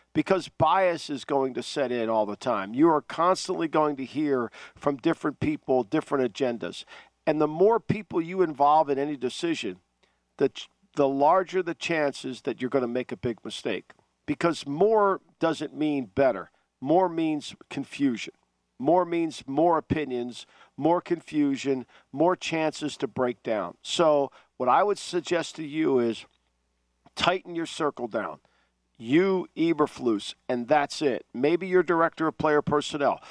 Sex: male